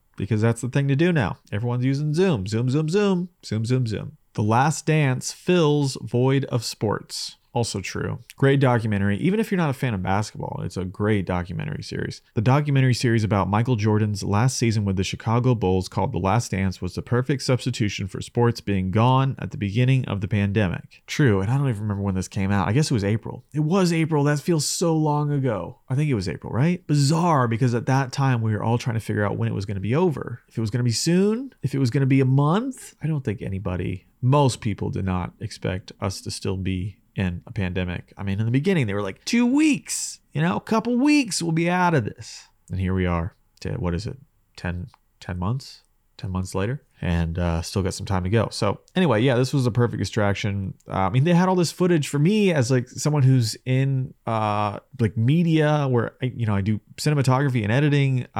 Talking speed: 230 wpm